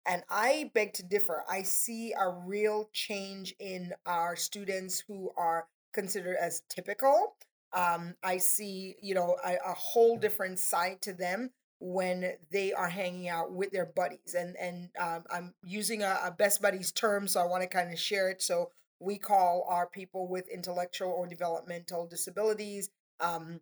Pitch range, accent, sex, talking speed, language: 180-200 Hz, American, female, 170 wpm, English